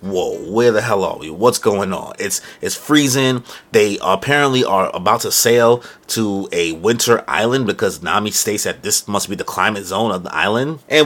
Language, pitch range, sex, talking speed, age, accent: English, 100-135 Hz, male, 200 wpm, 30-49, American